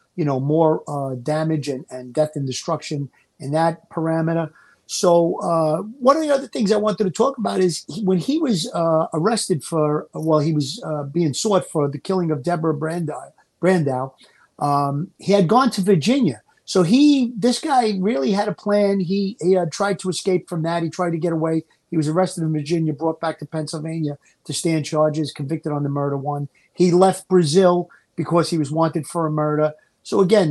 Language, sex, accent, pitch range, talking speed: English, male, American, 150-180 Hz, 200 wpm